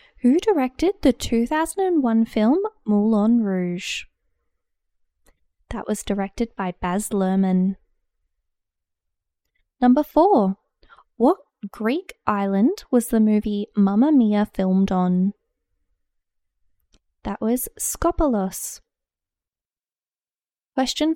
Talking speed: 80 wpm